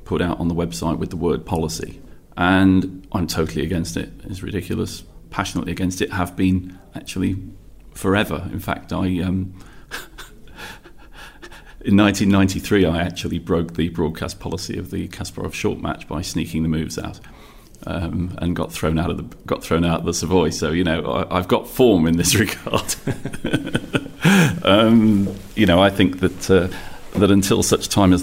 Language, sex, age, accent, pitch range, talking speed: English, male, 40-59, British, 85-95 Hz, 170 wpm